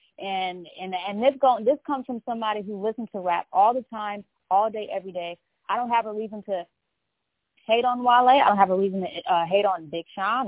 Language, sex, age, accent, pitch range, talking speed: English, female, 20-39, American, 205-270 Hz, 230 wpm